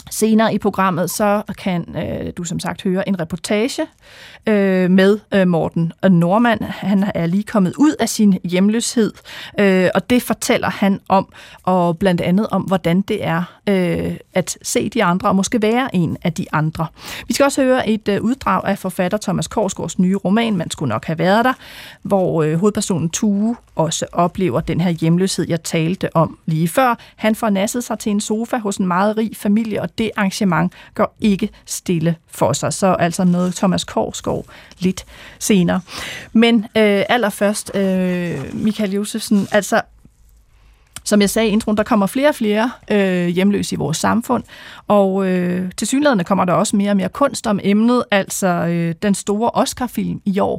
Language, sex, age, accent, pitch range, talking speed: Danish, female, 30-49, native, 180-215 Hz, 180 wpm